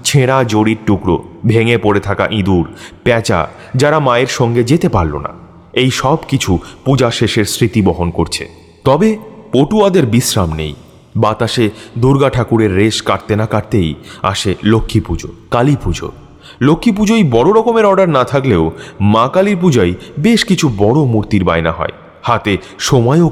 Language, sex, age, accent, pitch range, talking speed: Bengali, male, 30-49, native, 100-145 Hz, 145 wpm